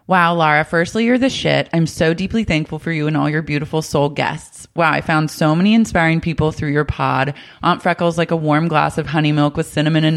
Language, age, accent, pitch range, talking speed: English, 20-39, American, 145-170 Hz, 235 wpm